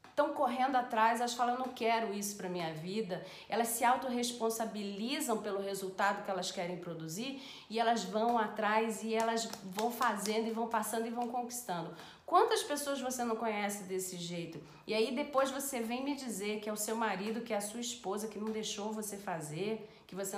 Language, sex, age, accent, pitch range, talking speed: Portuguese, female, 40-59, Brazilian, 200-245 Hz, 195 wpm